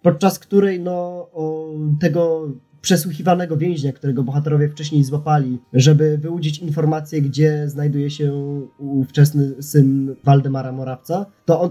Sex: male